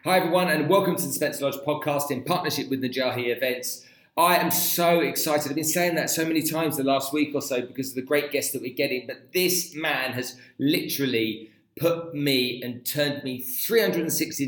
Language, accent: English, British